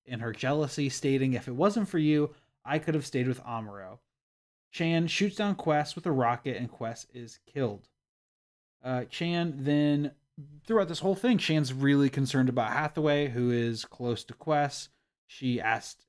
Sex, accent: male, American